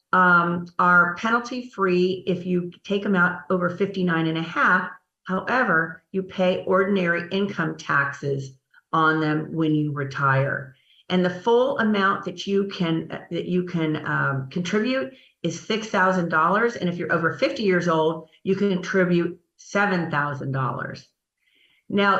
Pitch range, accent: 160-195 Hz, American